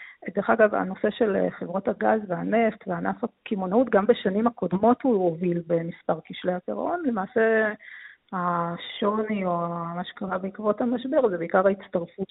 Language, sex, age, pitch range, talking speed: Hebrew, female, 30-49, 170-205 Hz, 130 wpm